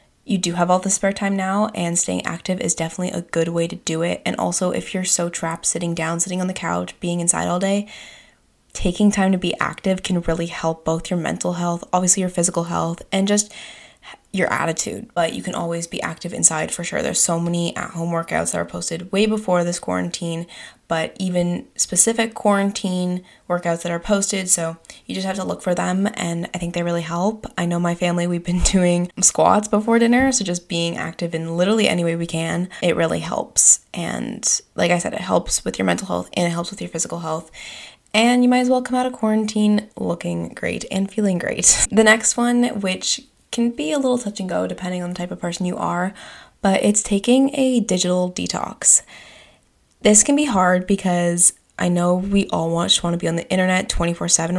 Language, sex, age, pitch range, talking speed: English, female, 20-39, 170-210 Hz, 215 wpm